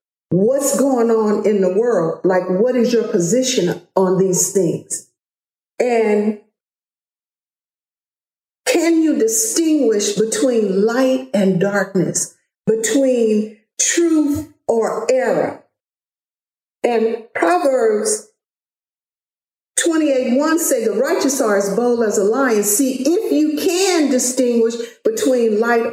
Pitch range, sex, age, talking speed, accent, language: 200-270 Hz, female, 50-69, 105 wpm, American, English